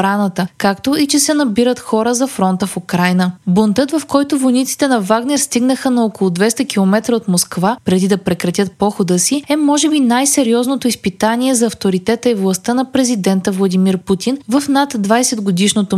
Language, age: Bulgarian, 20-39